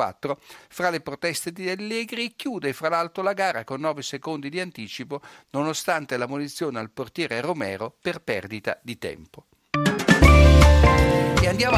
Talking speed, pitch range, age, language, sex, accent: 135 wpm, 125-165 Hz, 60-79, Italian, male, native